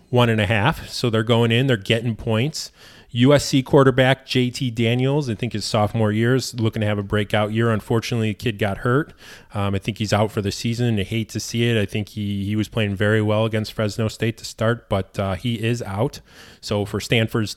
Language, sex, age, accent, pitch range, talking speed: English, male, 20-39, American, 105-120 Hz, 225 wpm